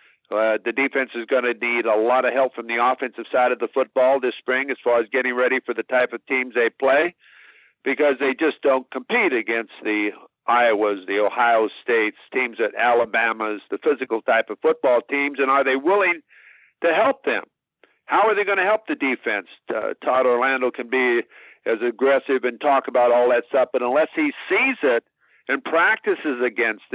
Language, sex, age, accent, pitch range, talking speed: English, male, 50-69, American, 125-160 Hz, 195 wpm